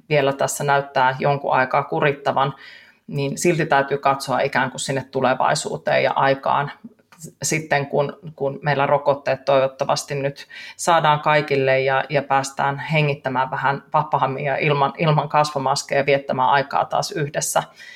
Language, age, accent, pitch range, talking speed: Finnish, 30-49, native, 140-160 Hz, 120 wpm